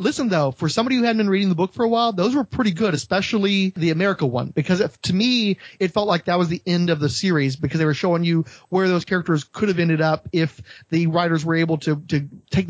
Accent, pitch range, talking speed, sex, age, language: American, 155-190 Hz, 260 wpm, male, 30-49, English